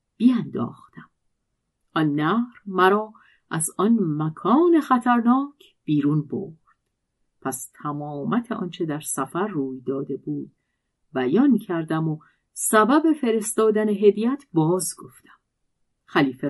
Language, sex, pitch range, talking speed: Persian, female, 150-230 Hz, 100 wpm